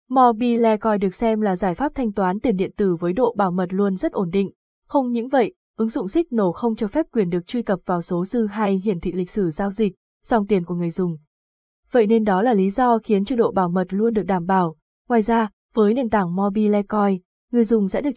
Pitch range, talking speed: 195-240 Hz, 240 wpm